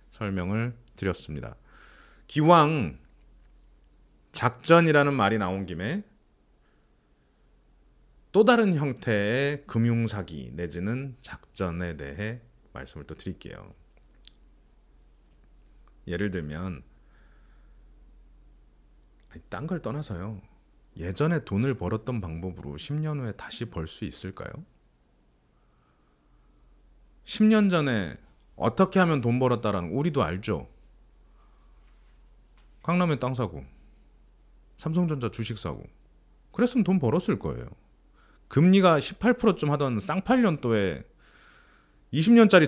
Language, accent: Korean, native